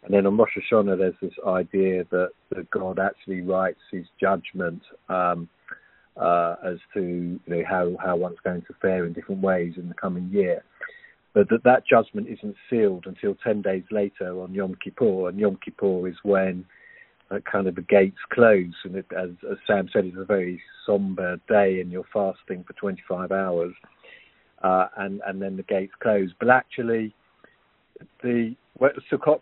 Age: 40-59